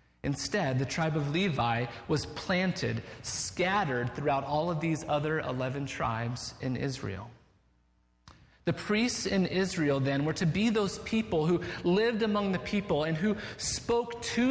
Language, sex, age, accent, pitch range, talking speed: English, male, 30-49, American, 150-210 Hz, 150 wpm